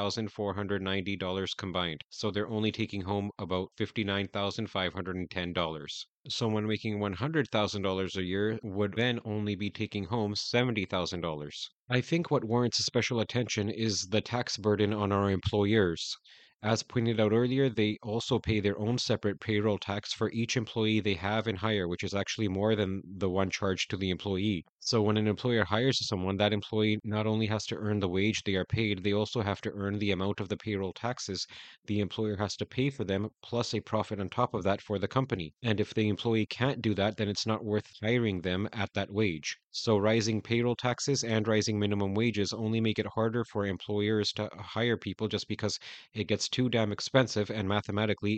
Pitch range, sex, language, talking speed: 100-110 Hz, male, English, 190 wpm